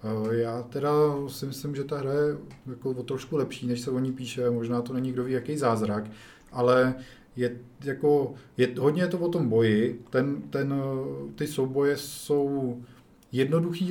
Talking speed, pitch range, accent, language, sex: 170 wpm, 115-135 Hz, native, Czech, male